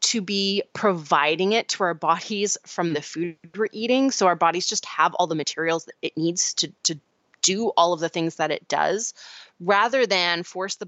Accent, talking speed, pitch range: American, 205 wpm, 155-195 Hz